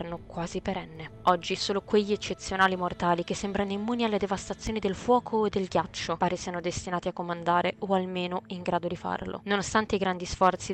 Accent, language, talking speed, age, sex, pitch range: native, Italian, 180 wpm, 20-39, female, 175-195 Hz